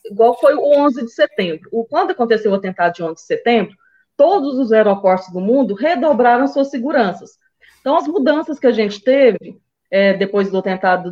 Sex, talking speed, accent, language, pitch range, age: female, 185 wpm, Brazilian, Portuguese, 205-275 Hz, 20-39